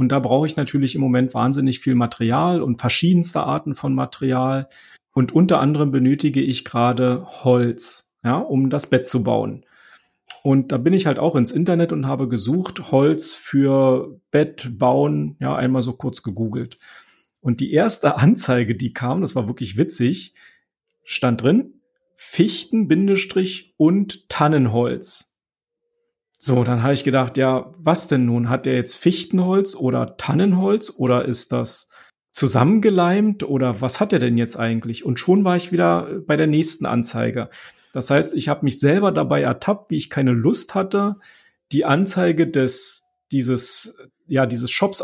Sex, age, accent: male, 40-59, German